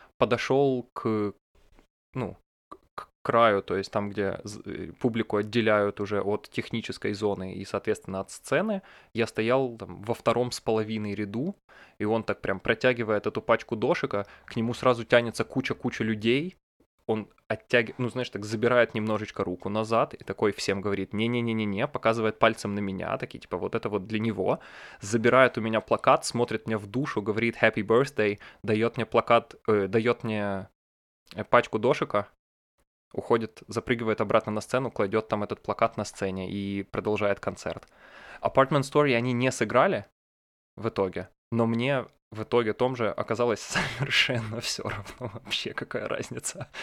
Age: 20-39